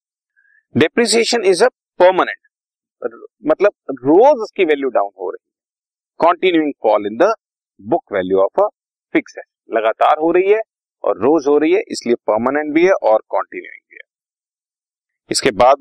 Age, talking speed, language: 40-59, 140 wpm, Hindi